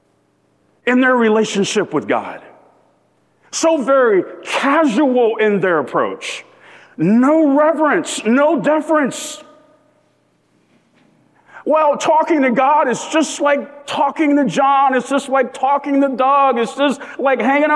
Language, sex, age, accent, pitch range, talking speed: English, male, 40-59, American, 215-300 Hz, 120 wpm